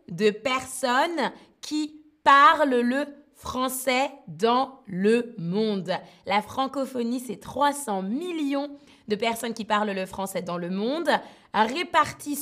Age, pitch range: 20-39, 205-280 Hz